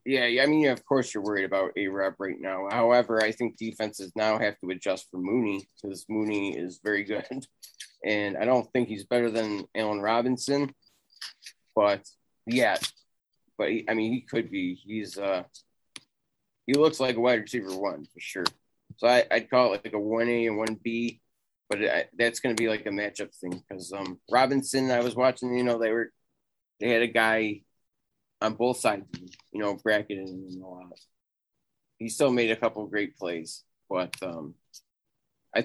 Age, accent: 20-39, American